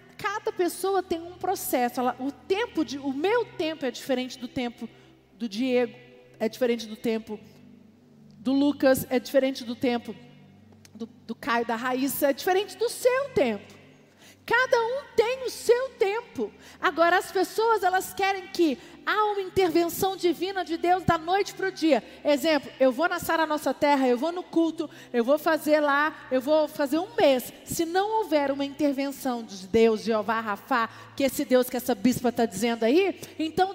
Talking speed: 180 wpm